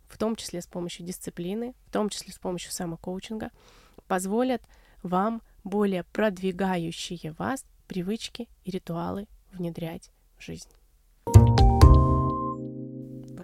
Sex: female